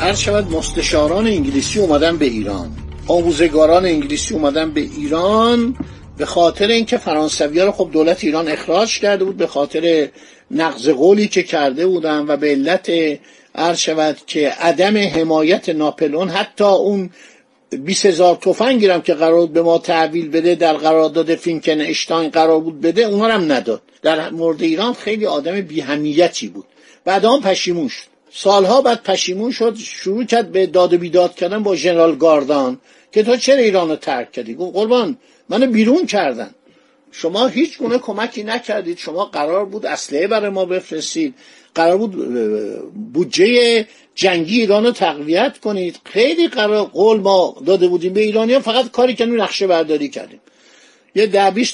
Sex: male